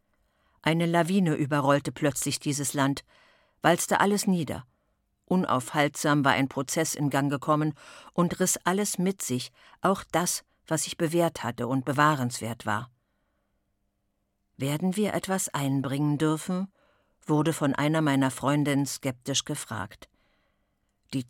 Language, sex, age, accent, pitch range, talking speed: German, female, 50-69, German, 140-170 Hz, 120 wpm